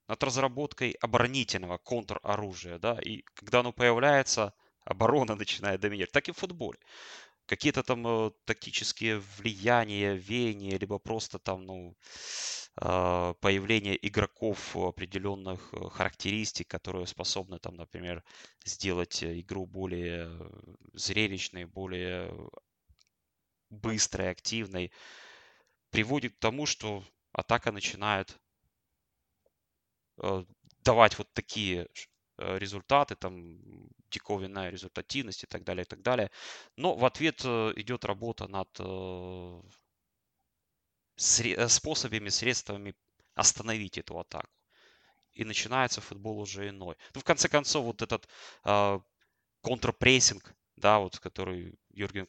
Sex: male